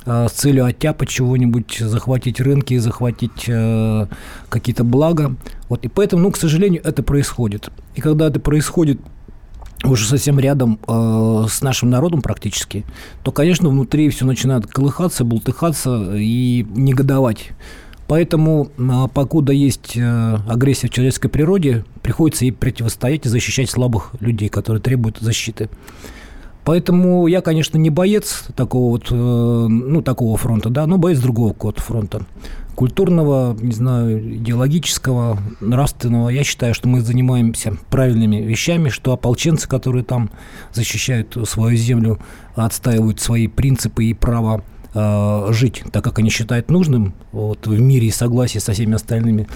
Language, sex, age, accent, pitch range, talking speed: Russian, male, 40-59, native, 110-135 Hz, 135 wpm